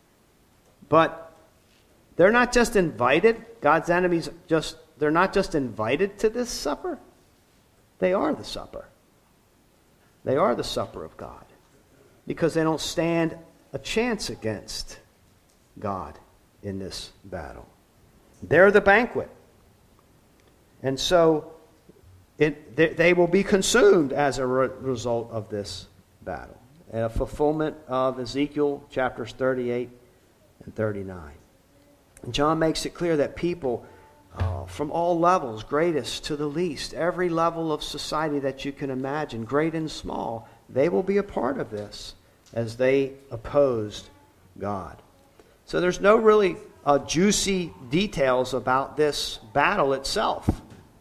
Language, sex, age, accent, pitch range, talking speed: English, male, 50-69, American, 110-165 Hz, 130 wpm